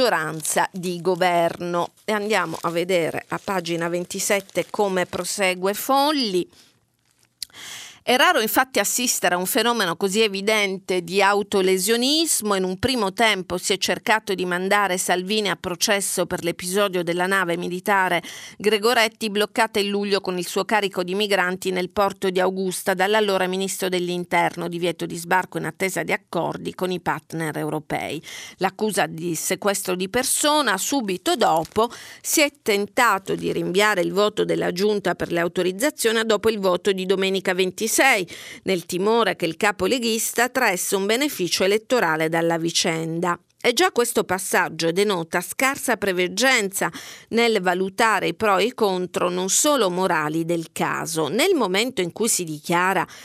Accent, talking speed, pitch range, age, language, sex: native, 145 wpm, 175-210 Hz, 40-59, Italian, female